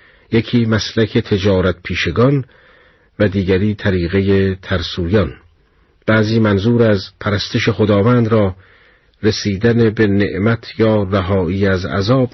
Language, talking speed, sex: Persian, 100 wpm, male